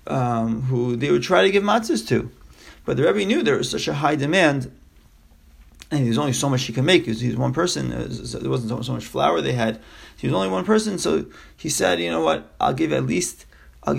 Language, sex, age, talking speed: English, male, 30-49, 245 wpm